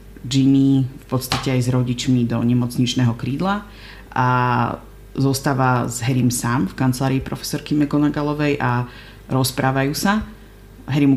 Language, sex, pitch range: Slovak, female, 120-135 Hz